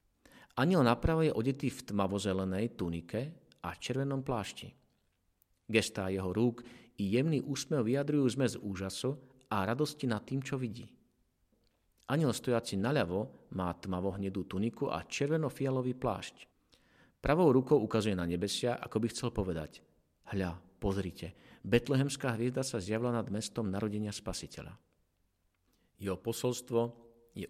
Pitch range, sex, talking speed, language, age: 95-125 Hz, male, 125 wpm, Slovak, 50-69